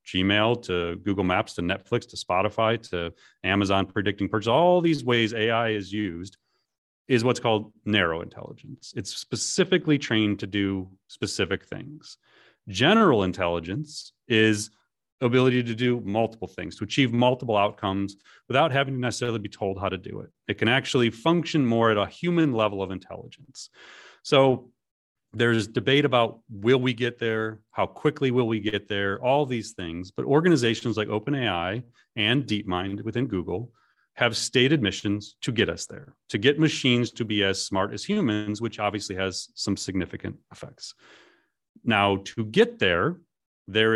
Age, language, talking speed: 30-49, English, 160 wpm